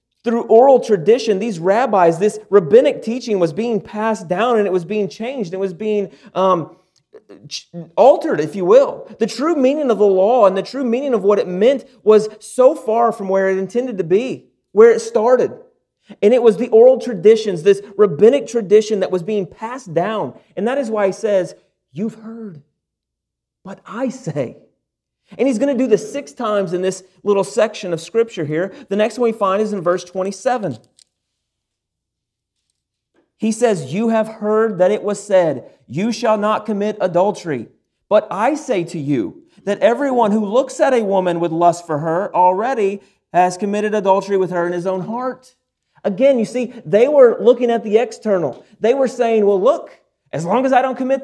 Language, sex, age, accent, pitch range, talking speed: English, male, 30-49, American, 190-245 Hz, 185 wpm